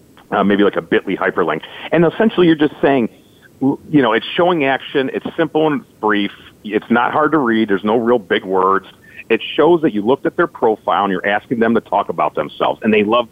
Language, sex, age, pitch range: English, male, 40-59, 100-155 Hz